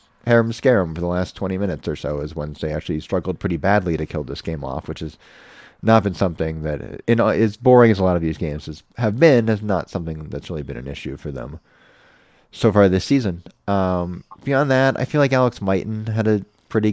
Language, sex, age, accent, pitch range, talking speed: English, male, 30-49, American, 85-115 Hz, 225 wpm